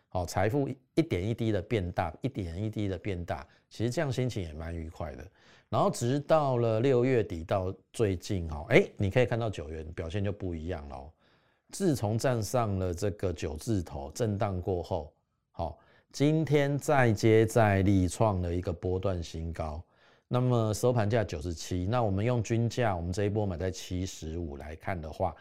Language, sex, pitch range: Chinese, male, 90-120 Hz